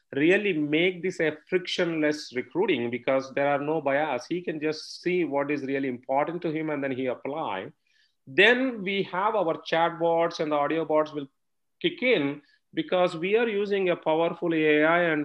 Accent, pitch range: Indian, 150-175 Hz